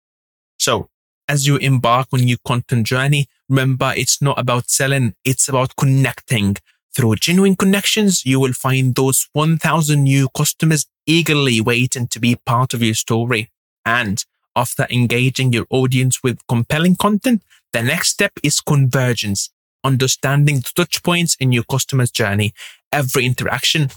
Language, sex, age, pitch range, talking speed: English, male, 20-39, 125-155 Hz, 145 wpm